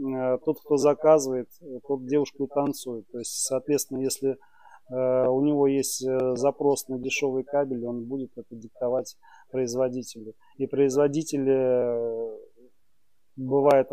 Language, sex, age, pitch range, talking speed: Russian, male, 30-49, 125-140 Hz, 110 wpm